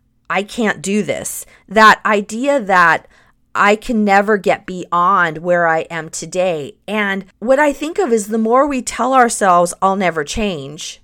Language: English